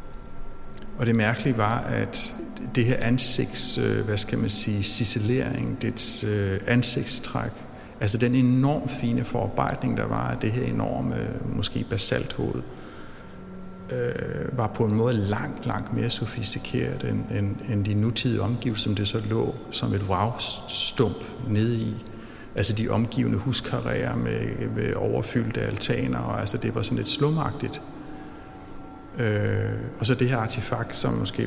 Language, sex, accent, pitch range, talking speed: Danish, male, native, 105-125 Hz, 140 wpm